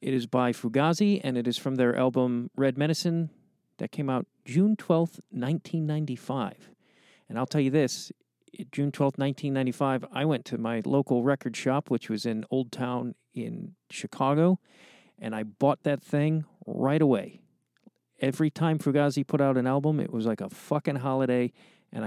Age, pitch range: 40-59, 130-175 Hz